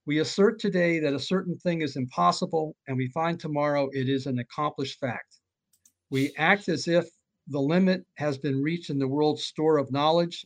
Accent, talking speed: American, 190 wpm